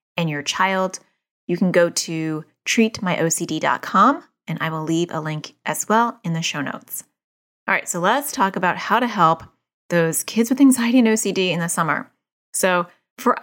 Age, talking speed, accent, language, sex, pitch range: 30-49, 180 wpm, American, English, female, 160-220 Hz